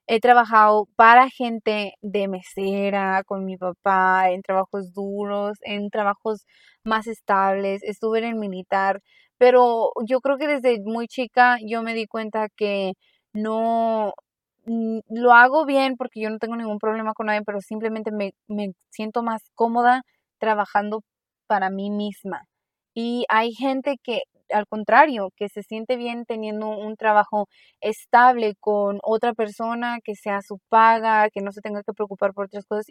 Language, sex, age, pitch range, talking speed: Spanish, female, 20-39, 200-230 Hz, 155 wpm